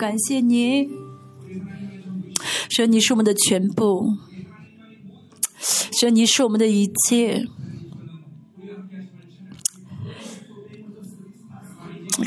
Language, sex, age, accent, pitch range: Chinese, female, 30-49, native, 195-240 Hz